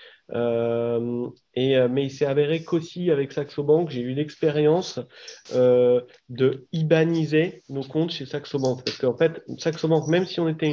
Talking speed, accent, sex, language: 160 wpm, French, male, French